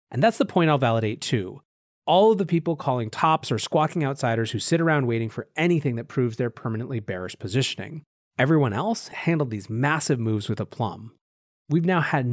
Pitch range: 110-145 Hz